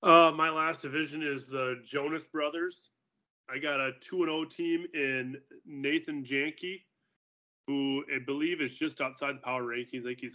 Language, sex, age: English, male, 20-39